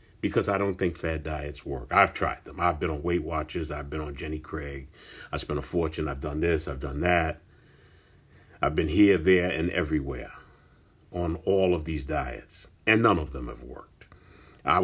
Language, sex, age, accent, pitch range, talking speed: English, male, 50-69, American, 75-90 Hz, 195 wpm